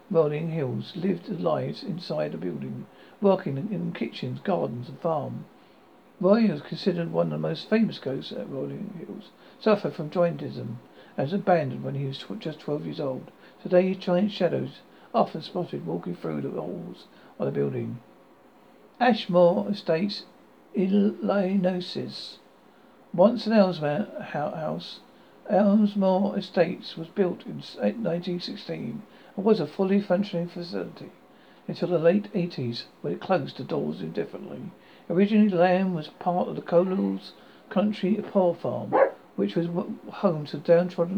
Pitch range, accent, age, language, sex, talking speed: 165-205 Hz, British, 60-79, English, male, 140 wpm